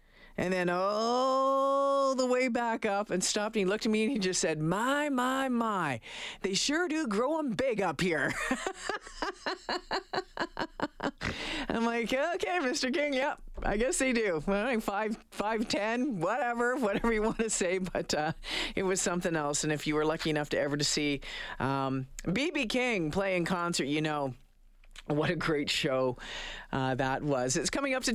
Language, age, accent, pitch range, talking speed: English, 50-69, American, 150-240 Hz, 175 wpm